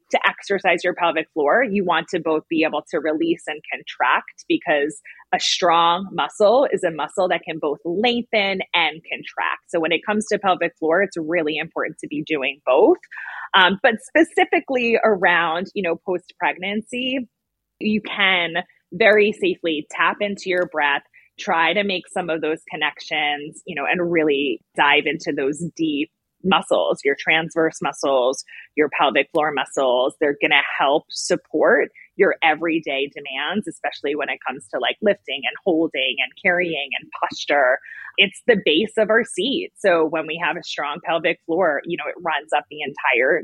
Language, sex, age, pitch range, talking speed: English, female, 20-39, 160-220 Hz, 170 wpm